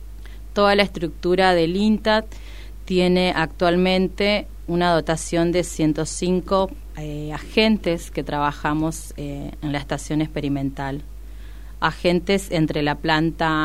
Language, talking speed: Spanish, 105 wpm